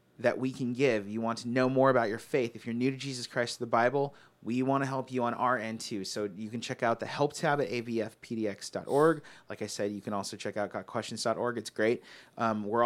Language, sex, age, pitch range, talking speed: English, male, 30-49, 110-135 Hz, 245 wpm